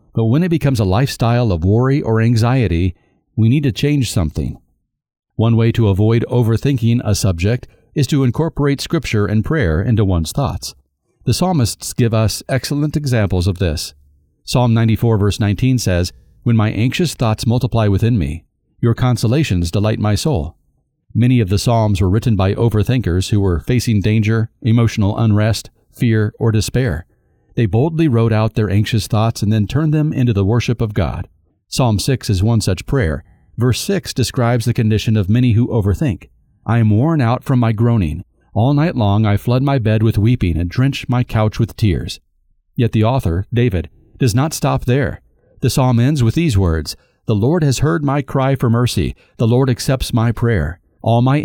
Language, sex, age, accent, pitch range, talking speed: English, male, 40-59, American, 105-125 Hz, 180 wpm